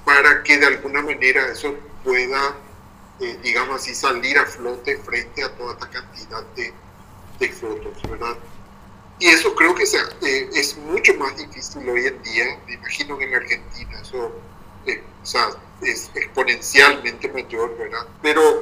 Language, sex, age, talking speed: Spanish, male, 40-59, 160 wpm